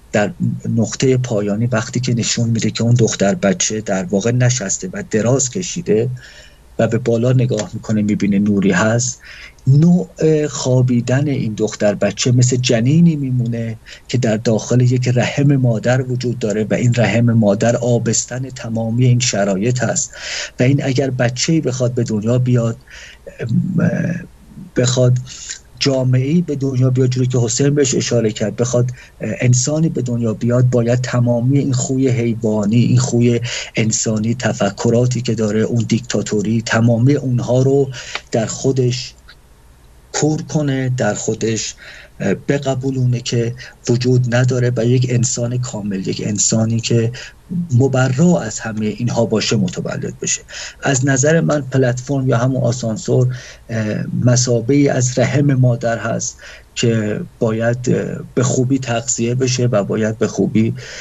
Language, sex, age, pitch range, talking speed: Persian, male, 50-69, 110-130 Hz, 135 wpm